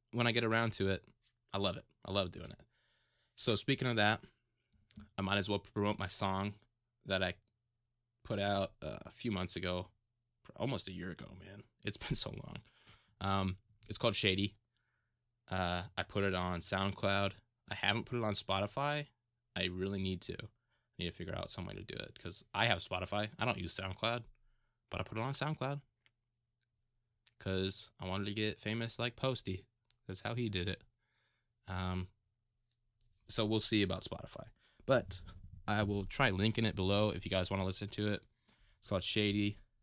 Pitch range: 95-115 Hz